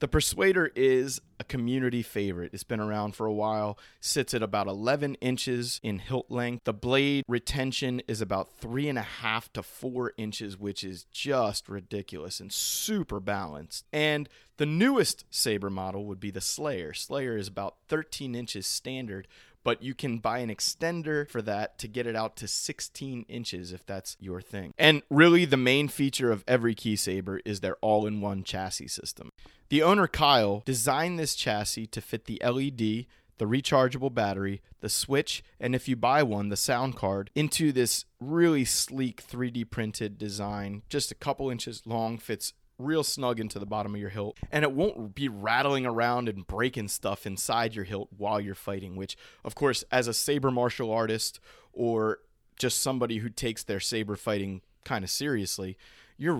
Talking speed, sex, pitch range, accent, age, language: 175 wpm, male, 100-130 Hz, American, 30-49, English